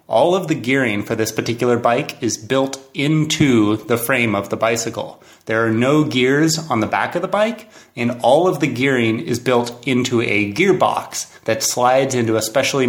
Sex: male